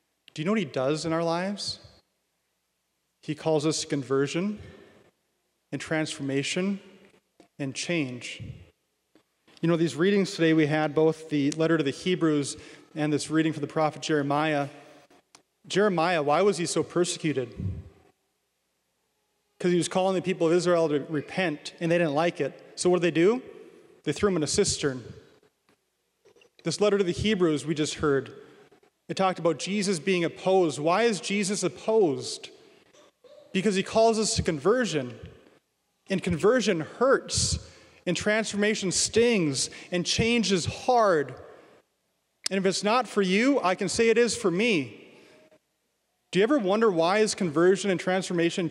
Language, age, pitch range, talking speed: English, 30-49, 155-205 Hz, 155 wpm